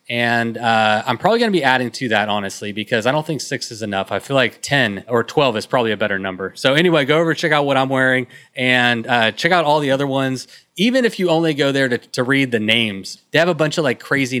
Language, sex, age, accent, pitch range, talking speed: English, male, 20-39, American, 120-145 Hz, 265 wpm